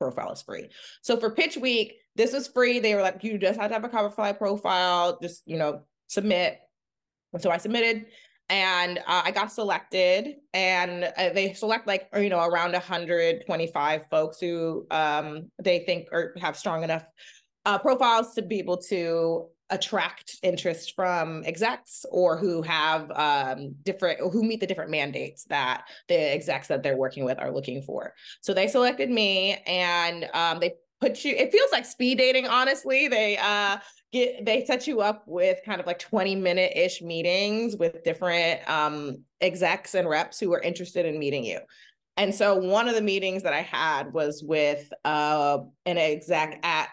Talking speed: 180 wpm